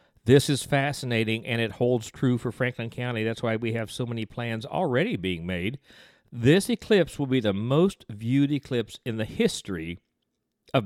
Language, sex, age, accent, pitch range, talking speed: English, male, 50-69, American, 115-160 Hz, 175 wpm